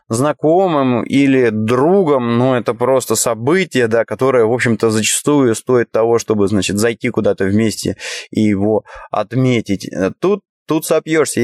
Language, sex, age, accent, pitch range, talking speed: Russian, male, 20-39, native, 110-140 Hz, 135 wpm